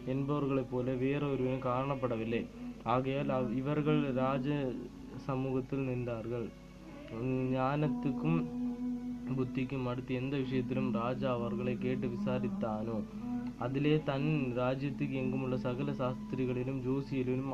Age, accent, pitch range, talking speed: 20-39, native, 120-130 Hz, 80 wpm